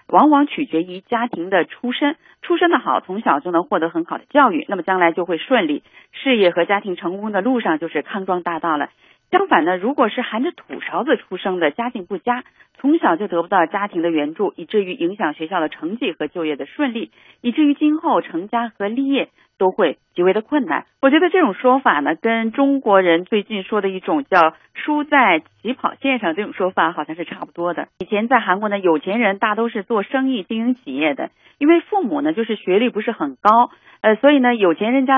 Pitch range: 180-280 Hz